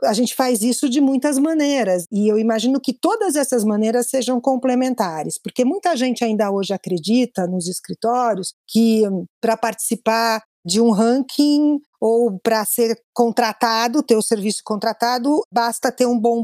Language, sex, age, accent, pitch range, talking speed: Portuguese, female, 50-69, Brazilian, 195-255 Hz, 155 wpm